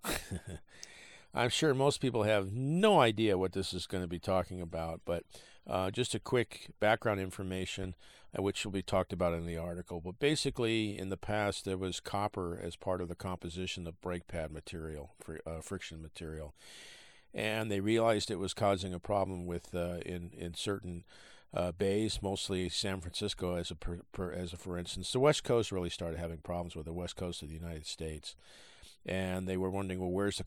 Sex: male